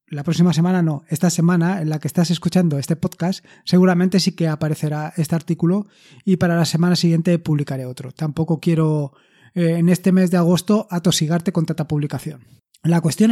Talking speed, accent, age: 180 wpm, Spanish, 20-39